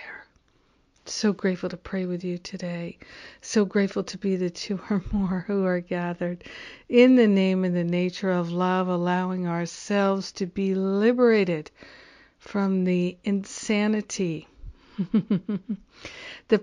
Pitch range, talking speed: 180-210 Hz, 125 wpm